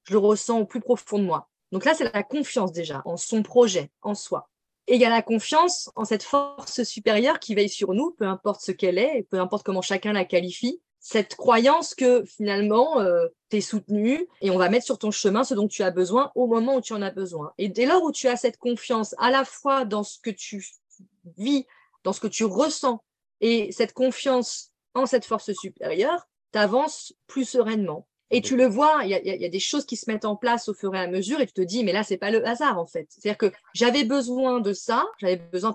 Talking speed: 235 wpm